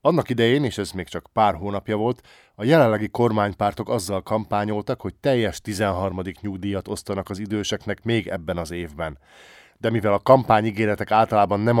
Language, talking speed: Hungarian, 160 wpm